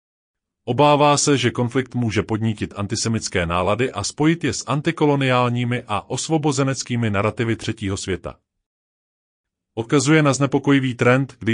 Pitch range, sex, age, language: 100-135 Hz, male, 30-49, Czech